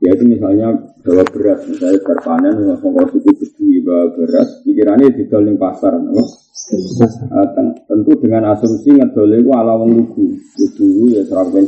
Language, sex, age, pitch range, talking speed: Malay, male, 30-49, 245-300 Hz, 140 wpm